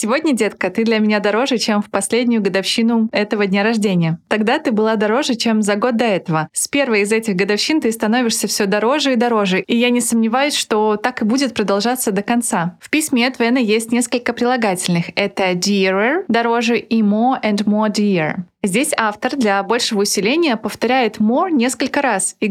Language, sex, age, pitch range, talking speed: Russian, female, 20-39, 205-245 Hz, 185 wpm